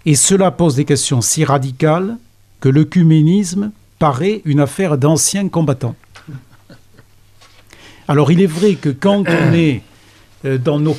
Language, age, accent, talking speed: French, 70-89, French, 130 wpm